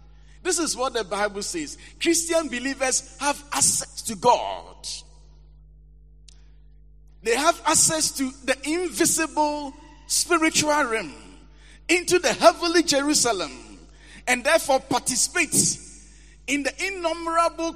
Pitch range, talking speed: 215-300 Hz, 100 wpm